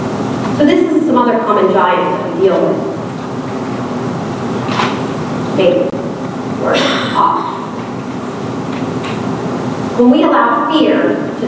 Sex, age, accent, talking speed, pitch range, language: female, 30-49, American, 95 wpm, 195-250 Hz, English